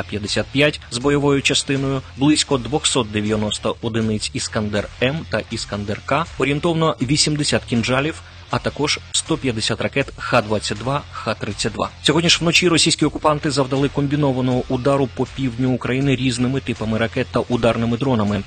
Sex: male